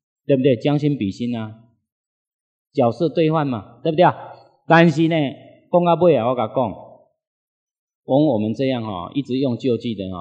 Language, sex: Chinese, male